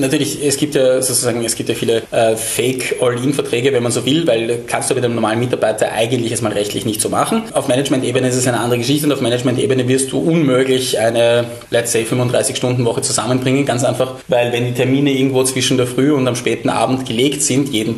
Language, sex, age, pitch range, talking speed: German, male, 20-39, 120-140 Hz, 215 wpm